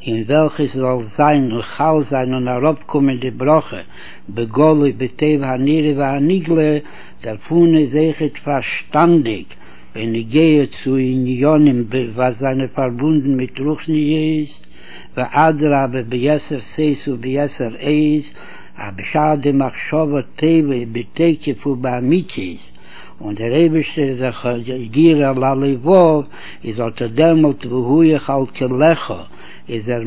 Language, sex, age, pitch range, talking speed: Hebrew, male, 60-79, 125-155 Hz, 95 wpm